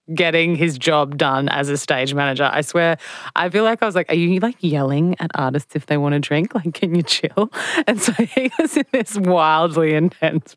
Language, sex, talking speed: English, female, 220 wpm